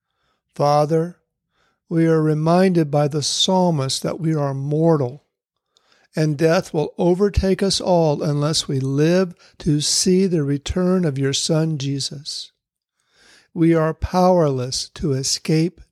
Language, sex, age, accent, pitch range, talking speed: English, male, 60-79, American, 140-170 Hz, 125 wpm